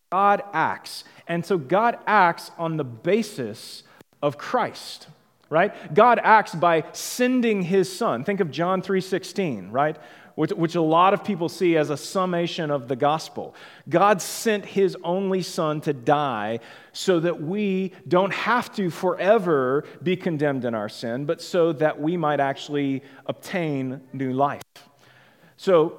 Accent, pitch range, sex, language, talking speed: American, 150-195 Hz, male, English, 150 wpm